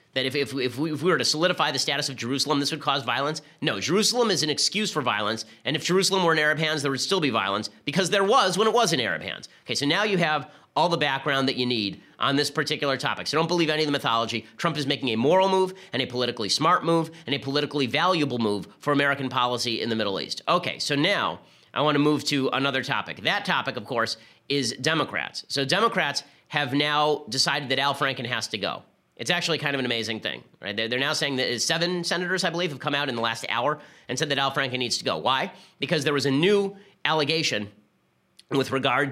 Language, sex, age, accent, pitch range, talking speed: English, male, 30-49, American, 130-160 Hz, 240 wpm